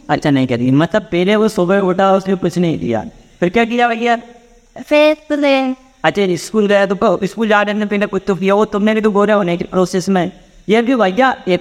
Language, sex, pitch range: Hindi, female, 165-225 Hz